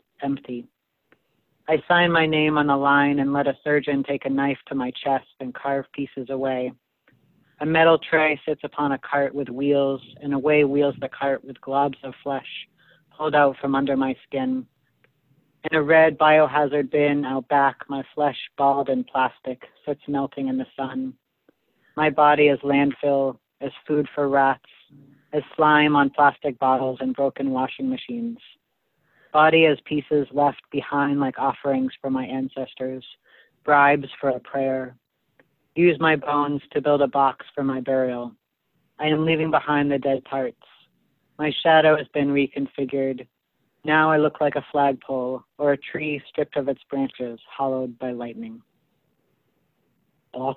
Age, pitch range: 40-59, 135-150 Hz